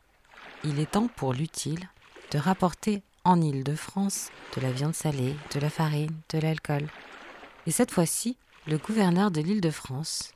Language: French